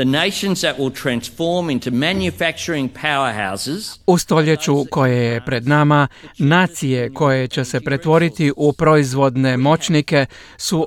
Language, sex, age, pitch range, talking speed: Croatian, male, 50-69, 140-165 Hz, 85 wpm